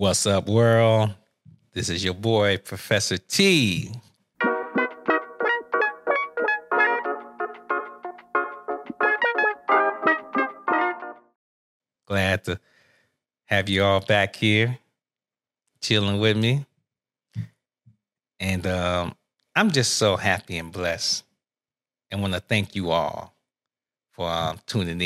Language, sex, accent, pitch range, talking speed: English, male, American, 95-120 Hz, 85 wpm